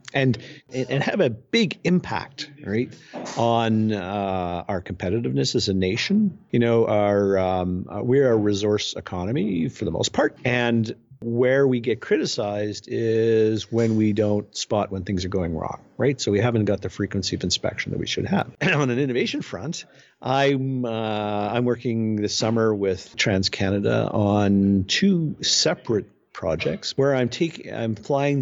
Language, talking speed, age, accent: English, 165 wpm, 50-69, American